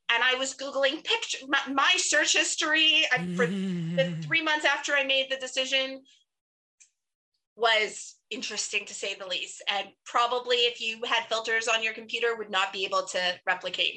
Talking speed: 170 wpm